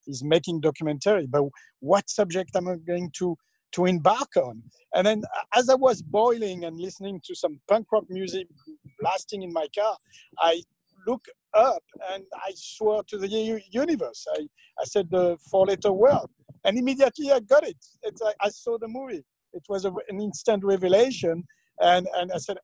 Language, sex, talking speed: English, male, 175 wpm